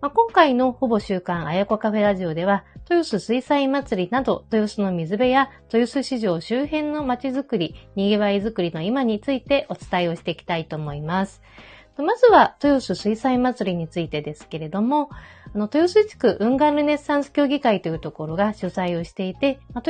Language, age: Japanese, 40-59